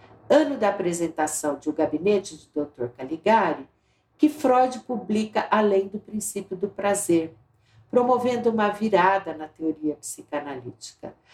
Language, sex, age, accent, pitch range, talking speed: Portuguese, female, 60-79, Brazilian, 160-215 Hz, 120 wpm